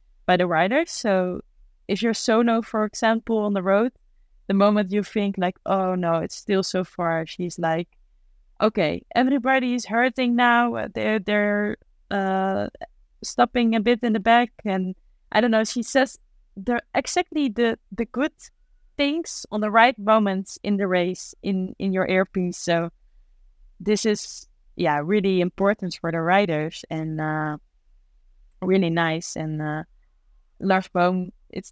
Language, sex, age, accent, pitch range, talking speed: English, female, 20-39, Dutch, 170-215 Hz, 150 wpm